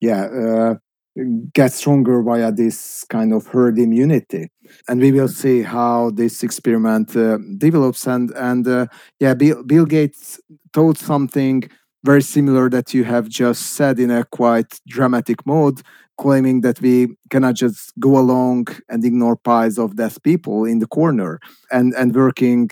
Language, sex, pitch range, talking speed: Hungarian, male, 115-135 Hz, 155 wpm